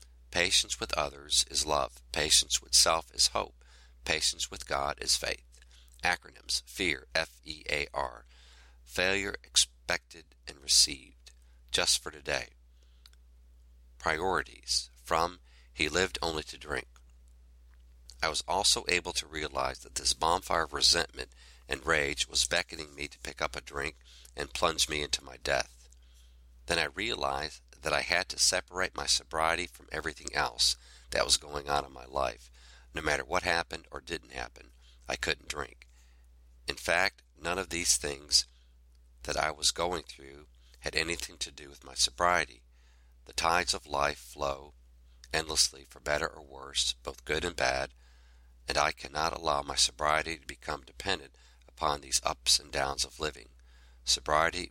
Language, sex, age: English, male, 50-69